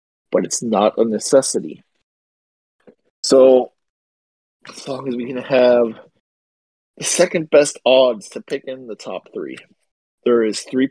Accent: American